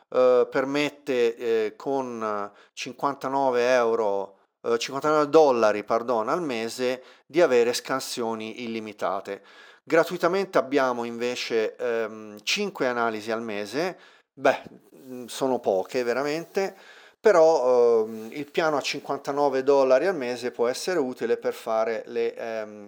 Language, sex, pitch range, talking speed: Italian, male, 115-165 Hz, 115 wpm